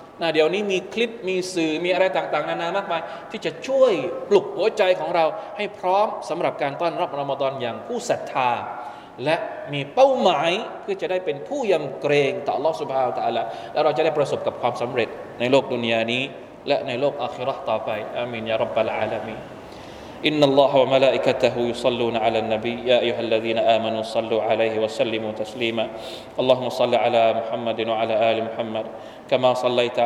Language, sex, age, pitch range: Thai, male, 20-39, 115-145 Hz